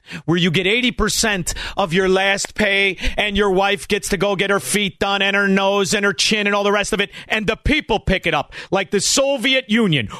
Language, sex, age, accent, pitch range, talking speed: English, male, 40-59, American, 170-235 Hz, 235 wpm